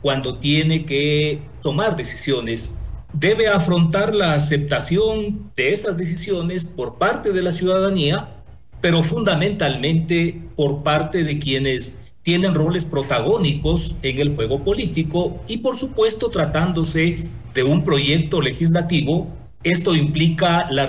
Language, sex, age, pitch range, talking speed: Spanish, male, 40-59, 140-175 Hz, 120 wpm